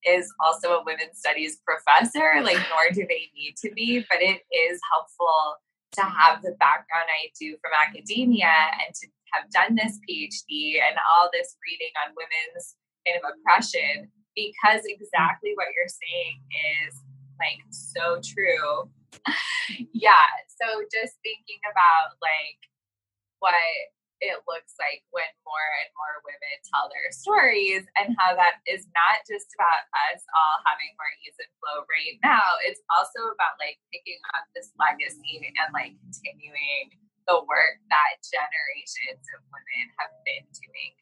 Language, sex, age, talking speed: English, female, 10-29, 150 wpm